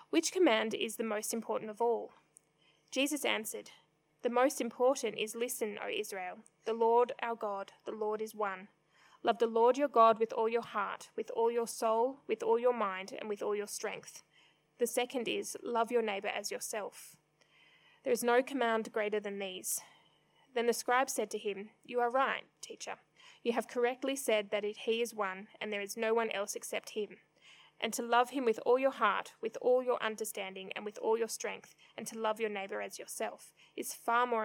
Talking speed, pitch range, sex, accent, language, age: 200 wpm, 215-250 Hz, female, Australian, English, 20-39